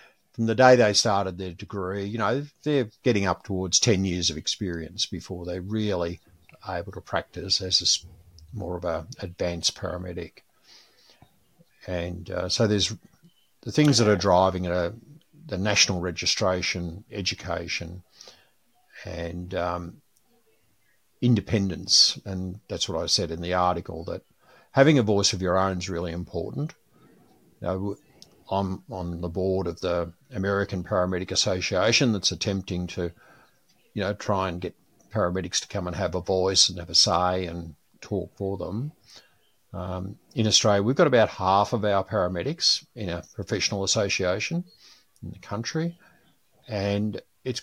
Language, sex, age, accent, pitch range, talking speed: English, male, 50-69, Australian, 90-105 Hz, 150 wpm